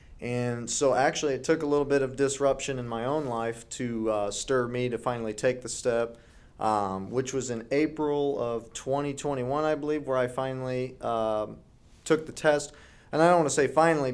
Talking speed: 195 wpm